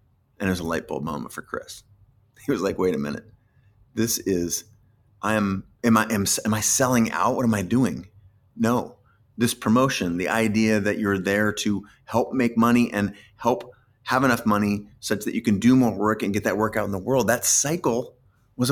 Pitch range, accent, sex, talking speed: 100-115 Hz, American, male, 210 wpm